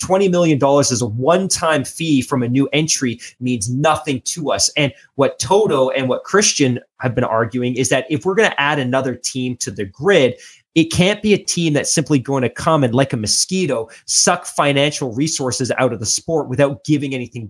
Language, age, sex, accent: English, 20-39, male, American